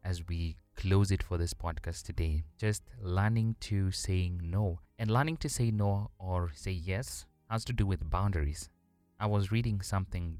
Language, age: English, 20-39